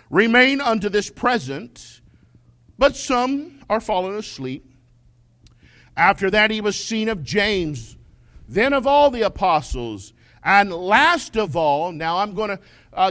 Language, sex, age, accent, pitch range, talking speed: English, male, 50-69, American, 135-225 Hz, 135 wpm